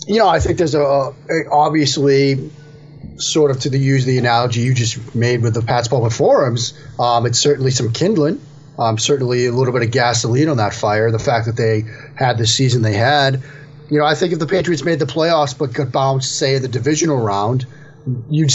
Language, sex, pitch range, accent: English, male, 120-150 Hz, American